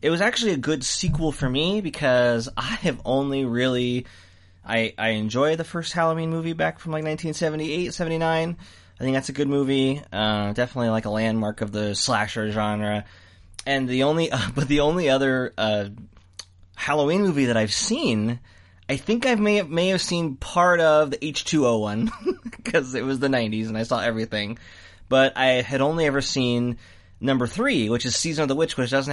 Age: 20-39